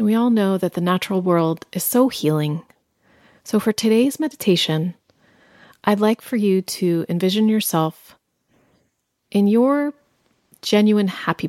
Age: 30-49